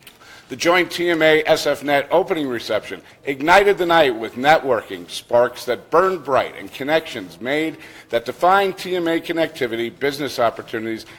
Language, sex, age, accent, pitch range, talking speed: English, male, 50-69, American, 120-165 Hz, 125 wpm